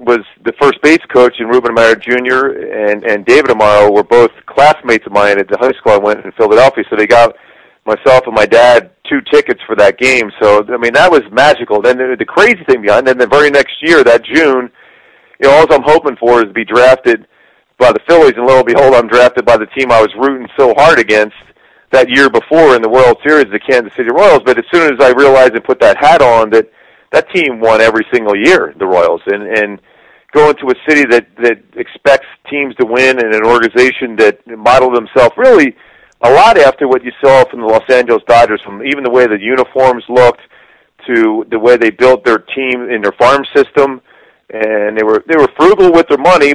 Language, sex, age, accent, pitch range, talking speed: English, male, 40-59, American, 115-140 Hz, 225 wpm